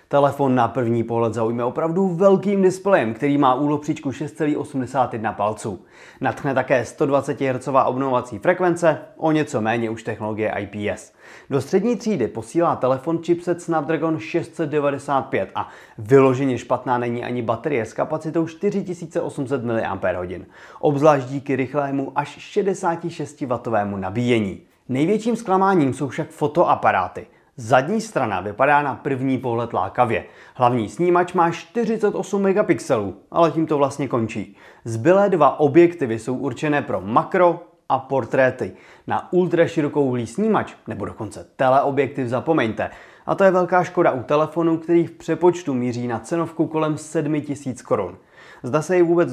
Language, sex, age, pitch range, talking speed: Czech, male, 30-49, 125-170 Hz, 130 wpm